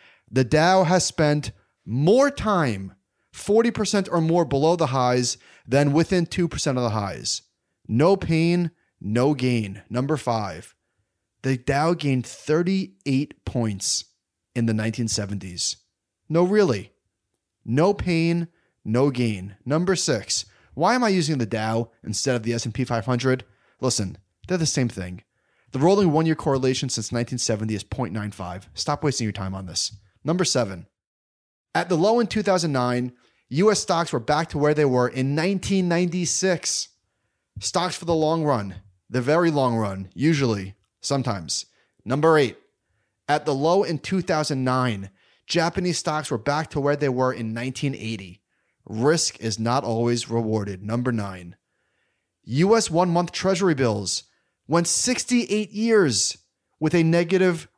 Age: 30-49